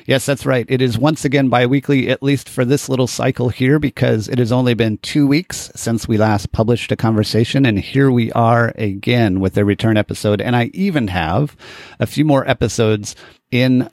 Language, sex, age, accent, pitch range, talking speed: English, male, 40-59, American, 105-130 Hz, 200 wpm